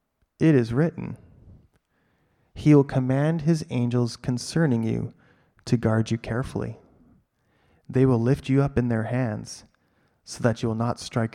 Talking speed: 150 wpm